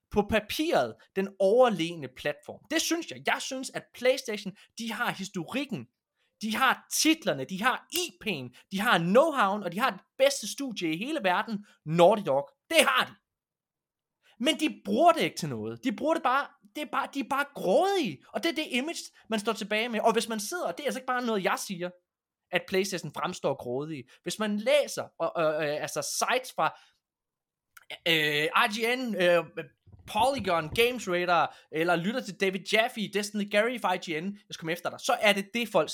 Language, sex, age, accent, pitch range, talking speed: Danish, male, 20-39, native, 155-245 Hz, 190 wpm